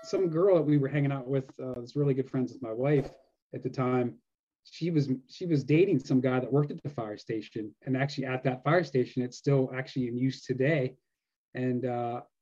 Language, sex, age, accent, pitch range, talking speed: English, male, 30-49, American, 130-155 Hz, 220 wpm